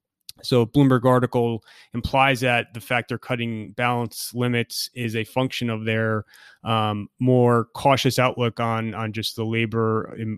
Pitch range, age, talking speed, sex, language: 110-125 Hz, 30-49, 145 wpm, male, English